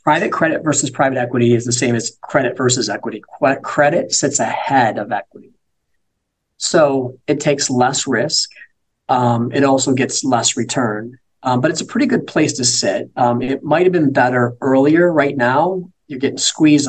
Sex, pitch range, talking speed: male, 115-135 Hz, 170 wpm